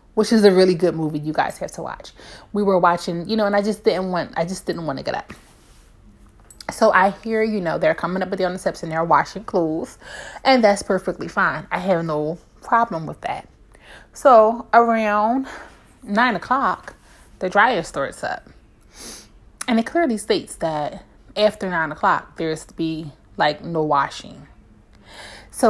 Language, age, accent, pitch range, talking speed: English, 30-49, American, 160-205 Hz, 175 wpm